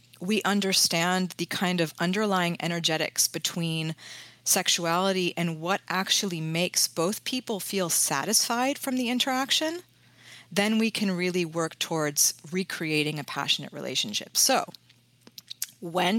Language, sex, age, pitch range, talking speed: English, female, 30-49, 160-200 Hz, 120 wpm